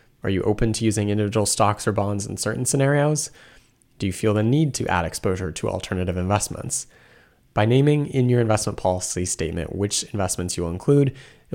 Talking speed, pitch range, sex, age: 185 wpm, 95-125 Hz, male, 20-39